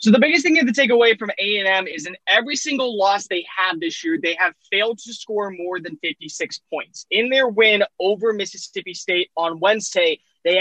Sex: male